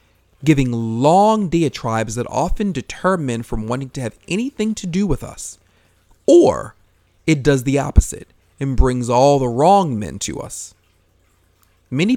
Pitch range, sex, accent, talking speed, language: 95-145 Hz, male, American, 150 wpm, English